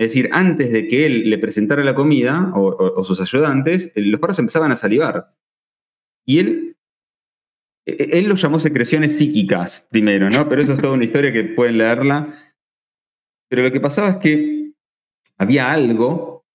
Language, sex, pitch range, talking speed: Spanish, male, 115-160 Hz, 165 wpm